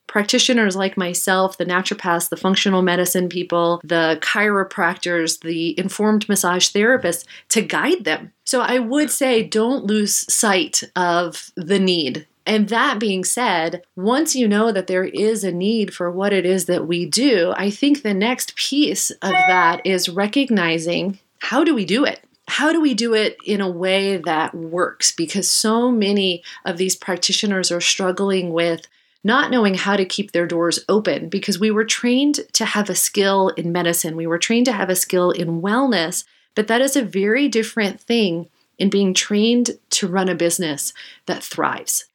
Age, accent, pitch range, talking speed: 30-49, American, 175-220 Hz, 175 wpm